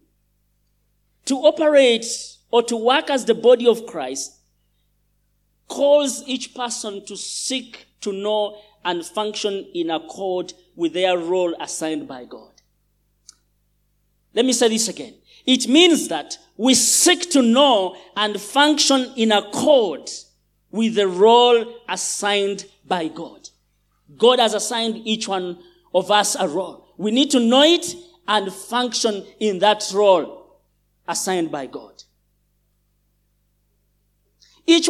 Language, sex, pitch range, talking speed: English, male, 195-265 Hz, 125 wpm